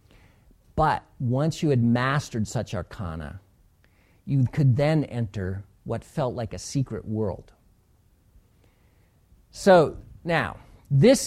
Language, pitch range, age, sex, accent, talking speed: English, 95-135 Hz, 50-69, male, American, 105 wpm